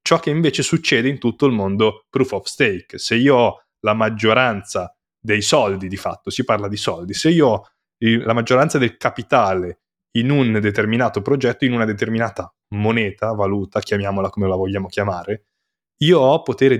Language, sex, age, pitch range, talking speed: Italian, male, 20-39, 100-130 Hz, 170 wpm